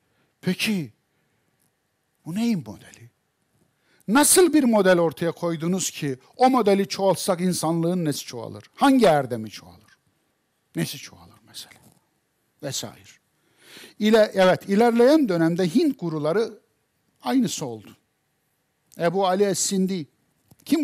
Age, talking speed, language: 60-79, 105 wpm, Turkish